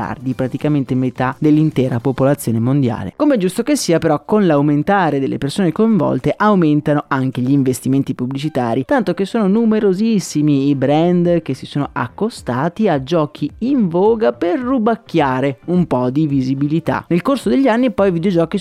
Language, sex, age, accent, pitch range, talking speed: Italian, male, 30-49, native, 130-190 Hz, 160 wpm